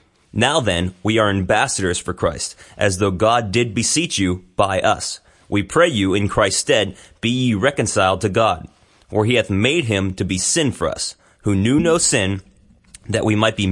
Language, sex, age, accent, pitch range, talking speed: English, male, 30-49, American, 95-120 Hz, 195 wpm